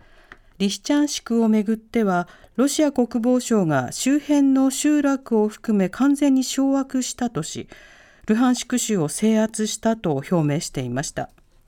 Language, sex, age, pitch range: Japanese, female, 50-69, 180-260 Hz